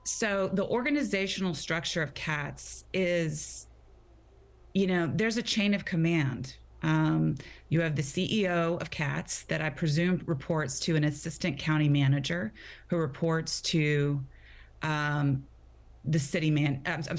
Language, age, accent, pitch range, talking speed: English, 30-49, American, 150-175 Hz, 135 wpm